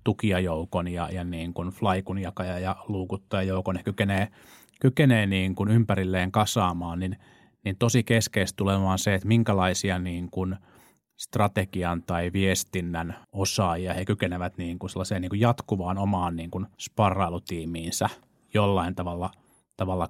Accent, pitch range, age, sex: native, 90-105 Hz, 30-49, male